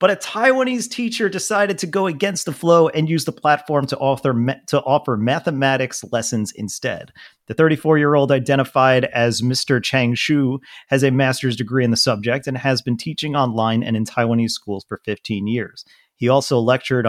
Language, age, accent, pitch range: English, 40-59, American, 110-145 Hz